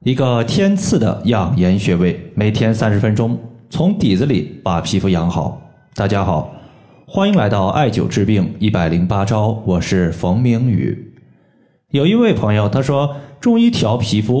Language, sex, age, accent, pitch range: Chinese, male, 20-39, native, 100-150 Hz